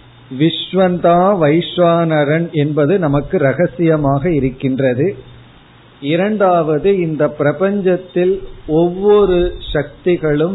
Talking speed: 55 wpm